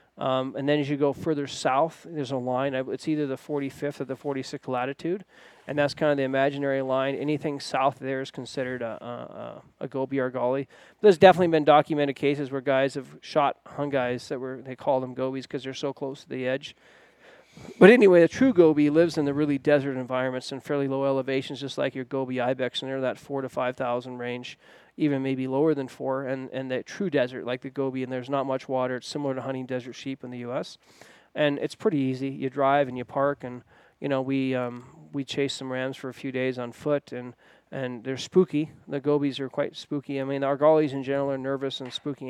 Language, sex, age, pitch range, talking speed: English, male, 40-59, 130-145 Hz, 225 wpm